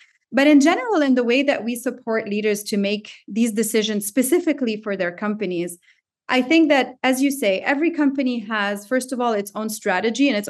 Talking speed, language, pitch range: 200 wpm, English, 205-280 Hz